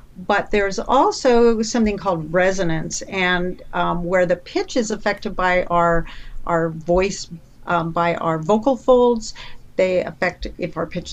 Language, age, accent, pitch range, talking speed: English, 50-69, American, 170-220 Hz, 145 wpm